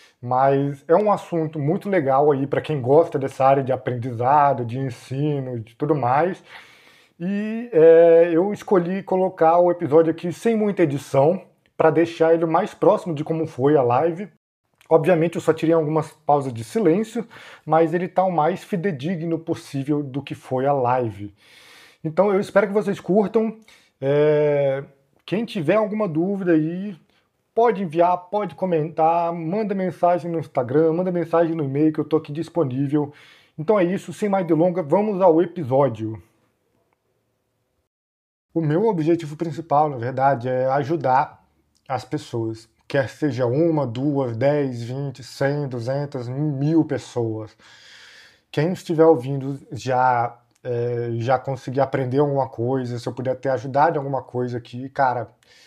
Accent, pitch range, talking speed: Brazilian, 130-170 Hz, 150 wpm